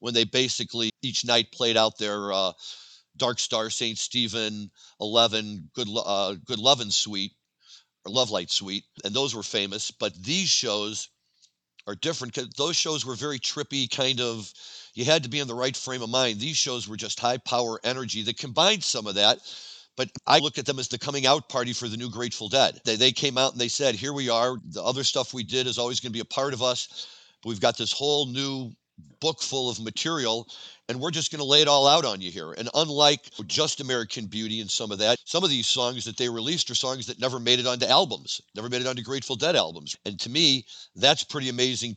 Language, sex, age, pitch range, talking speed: English, male, 50-69, 115-140 Hz, 225 wpm